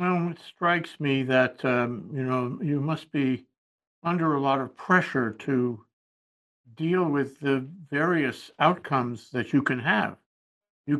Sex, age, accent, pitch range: male, 60-79, American, 130-170 Hz